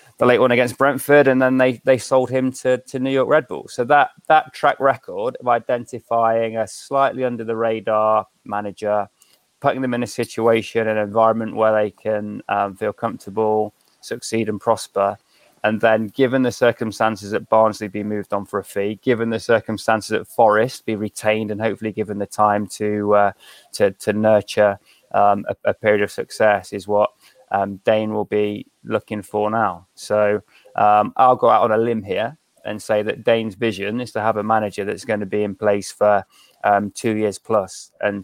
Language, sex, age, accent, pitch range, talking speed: English, male, 20-39, British, 105-115 Hz, 190 wpm